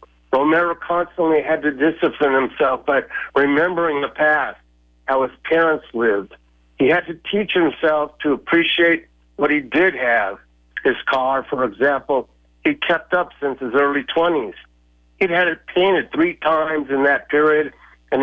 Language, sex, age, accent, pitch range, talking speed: English, male, 60-79, American, 130-170 Hz, 150 wpm